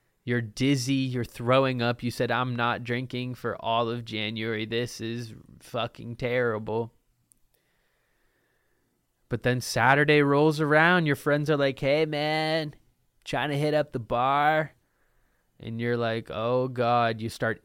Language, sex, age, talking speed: English, male, 20-39, 145 wpm